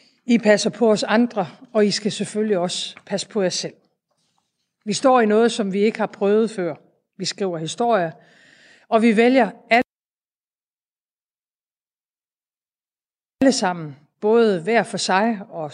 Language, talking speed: Danish, 140 wpm